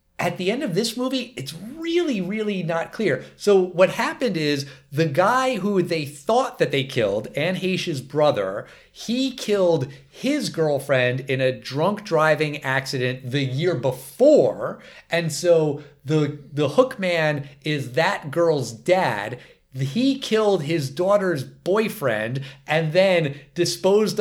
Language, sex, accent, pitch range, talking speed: English, male, American, 140-195 Hz, 140 wpm